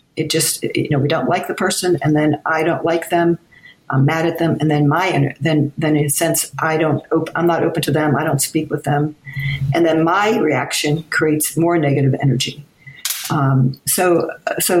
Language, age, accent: English, 50-69, American